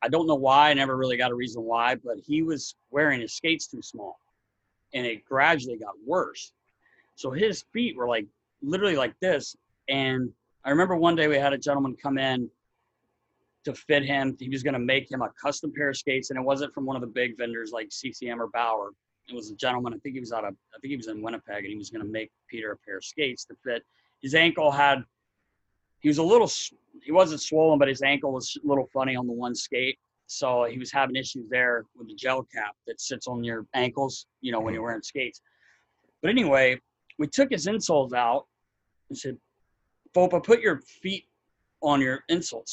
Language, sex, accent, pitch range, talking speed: English, male, American, 125-155 Hz, 220 wpm